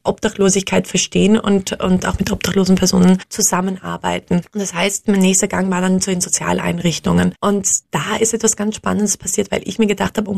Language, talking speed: German, 190 wpm